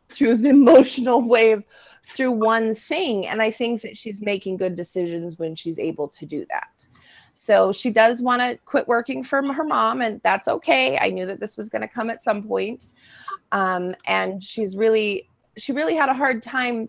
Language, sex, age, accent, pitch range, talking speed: English, female, 20-39, American, 180-245 Hz, 190 wpm